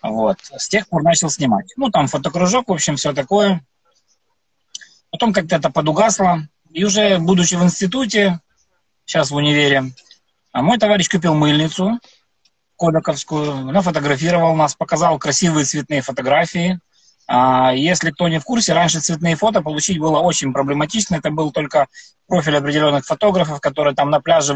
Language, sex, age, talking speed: Ukrainian, male, 20-39, 145 wpm